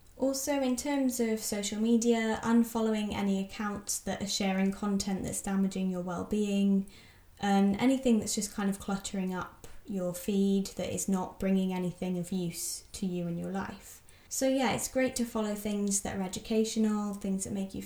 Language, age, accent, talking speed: English, 10-29, British, 180 wpm